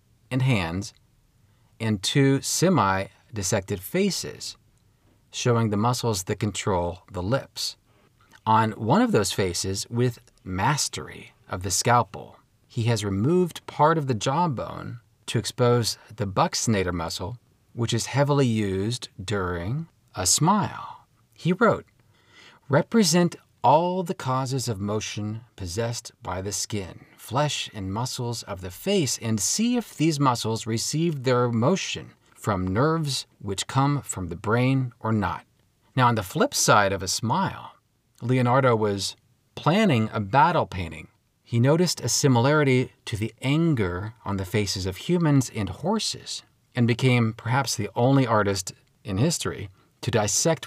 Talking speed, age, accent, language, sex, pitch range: 135 wpm, 40-59, American, English, male, 105-135 Hz